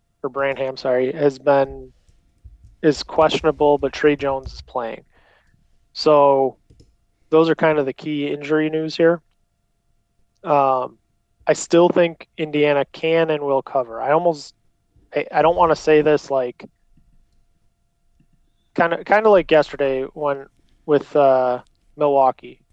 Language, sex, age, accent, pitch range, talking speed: English, male, 30-49, American, 125-155 Hz, 135 wpm